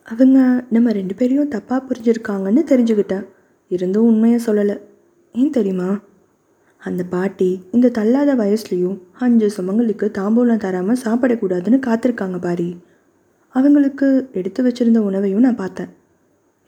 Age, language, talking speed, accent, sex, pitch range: 20-39, Tamil, 110 wpm, native, female, 195-250 Hz